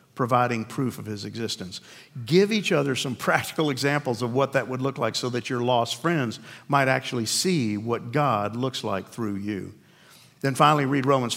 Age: 50-69